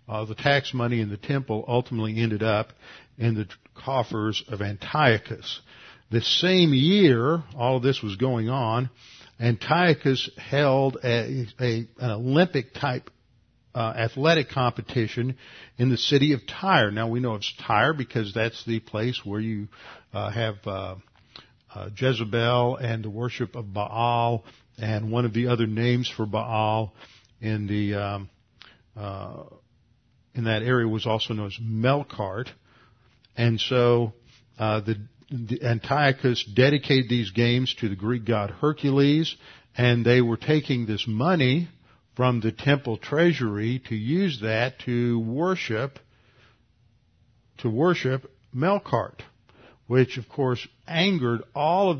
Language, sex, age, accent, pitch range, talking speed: English, male, 50-69, American, 110-130 Hz, 135 wpm